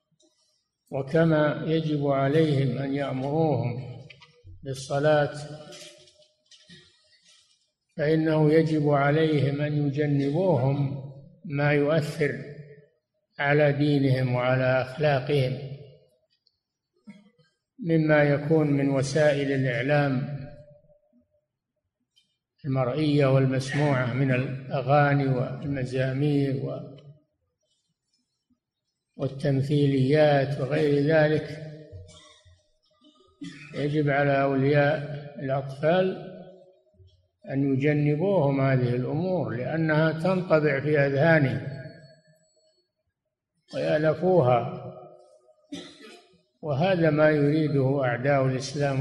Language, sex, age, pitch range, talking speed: Arabic, male, 60-79, 135-155 Hz, 60 wpm